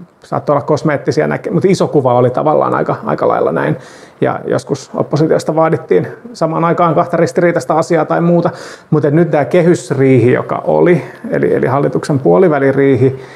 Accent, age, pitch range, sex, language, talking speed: native, 30-49, 140-165 Hz, male, Finnish, 155 wpm